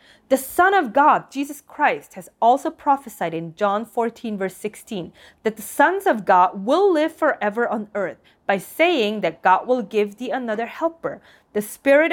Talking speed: 175 wpm